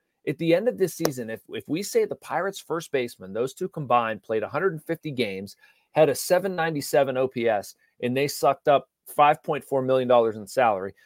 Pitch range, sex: 125-185 Hz, male